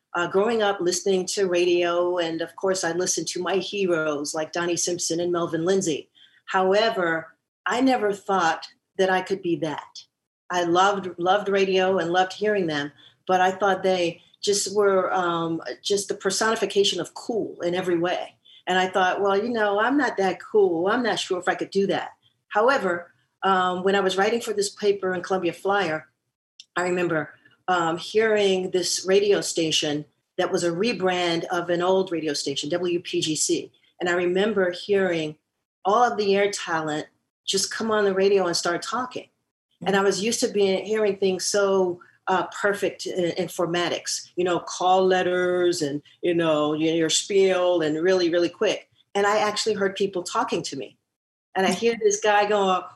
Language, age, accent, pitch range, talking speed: English, 40-59, American, 175-200 Hz, 180 wpm